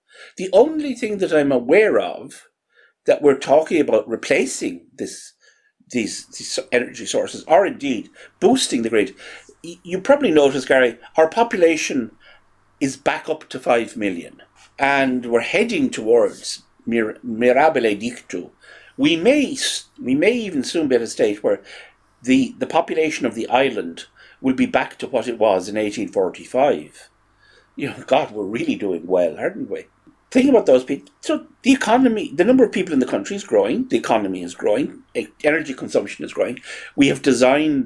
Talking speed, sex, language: 165 wpm, male, English